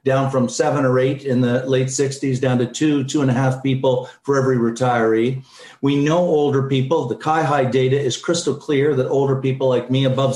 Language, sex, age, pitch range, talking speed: English, male, 50-69, 125-145 Hz, 210 wpm